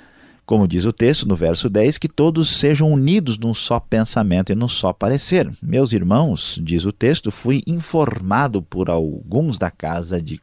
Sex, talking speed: male, 175 wpm